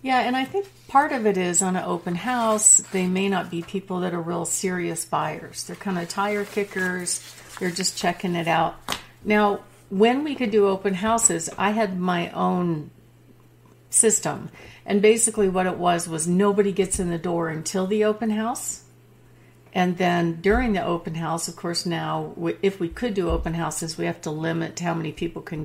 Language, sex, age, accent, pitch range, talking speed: English, female, 50-69, American, 165-205 Hz, 190 wpm